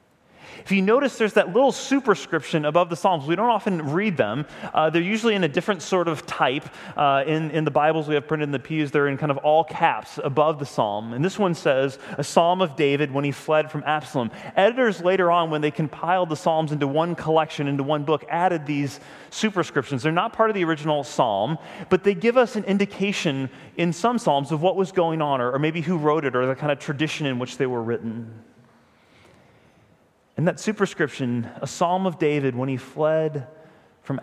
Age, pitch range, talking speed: 30-49, 135-175 Hz, 215 wpm